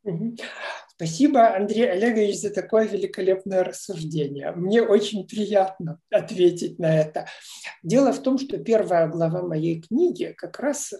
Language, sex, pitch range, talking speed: Russian, male, 170-250 Hz, 125 wpm